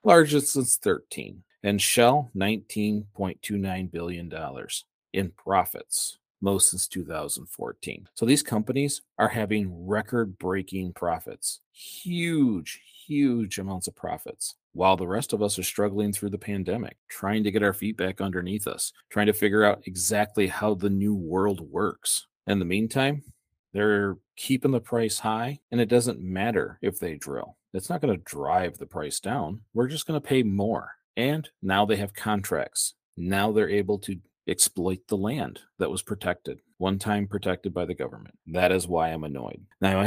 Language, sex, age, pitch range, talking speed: English, male, 40-59, 95-110 Hz, 165 wpm